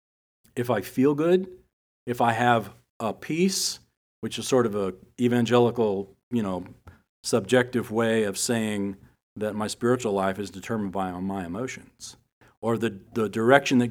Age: 40-59